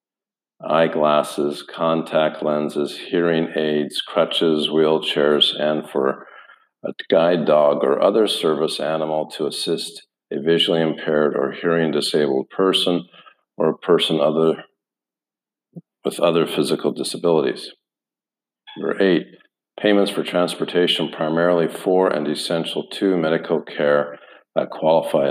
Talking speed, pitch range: 110 wpm, 75-85 Hz